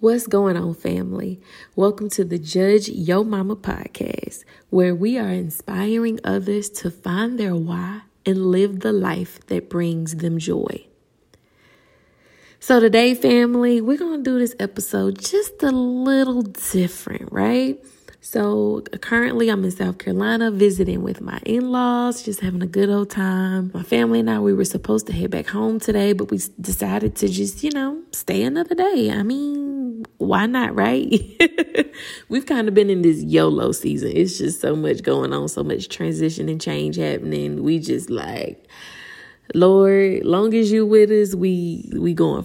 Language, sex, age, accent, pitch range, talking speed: English, female, 20-39, American, 175-230 Hz, 165 wpm